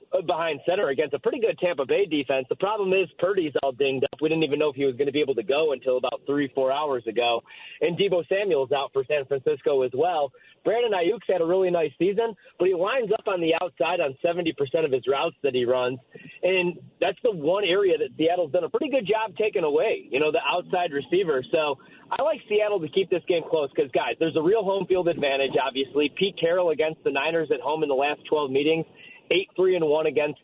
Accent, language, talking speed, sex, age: American, English, 230 wpm, male, 30-49